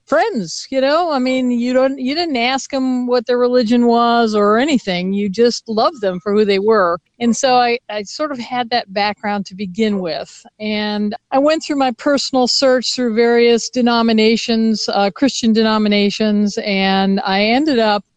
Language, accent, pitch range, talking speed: English, American, 210-260 Hz, 180 wpm